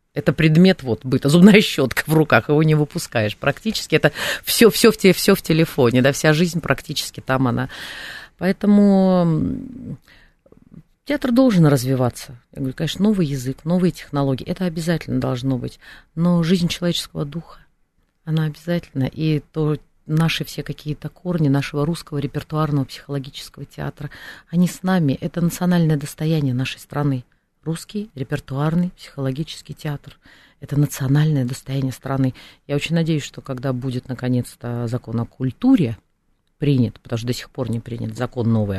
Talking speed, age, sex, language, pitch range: 140 wpm, 30-49, female, Russian, 130-165 Hz